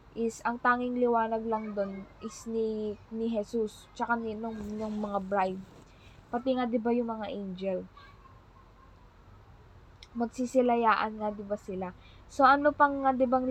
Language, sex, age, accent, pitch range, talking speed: Filipino, female, 20-39, native, 205-250 Hz, 140 wpm